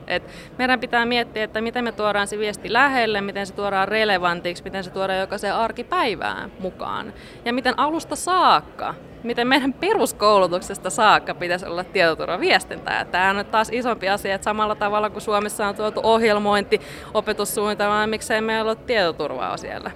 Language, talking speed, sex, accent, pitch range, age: Finnish, 160 wpm, female, native, 175-230 Hz, 20-39